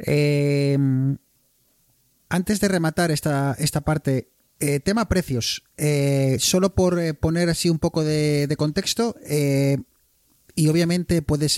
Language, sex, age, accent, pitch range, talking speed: Spanish, male, 30-49, Spanish, 130-170 Hz, 125 wpm